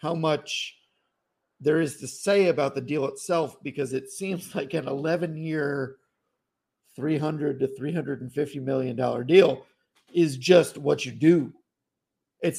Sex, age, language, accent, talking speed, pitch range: male, 50-69, English, American, 125 wpm, 130-160 Hz